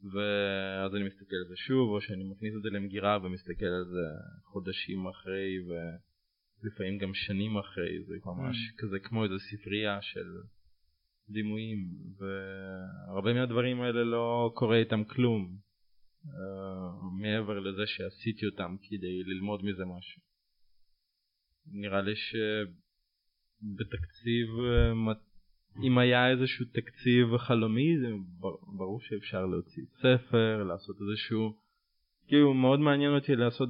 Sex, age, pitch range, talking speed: male, 20-39, 95-120 Hz, 120 wpm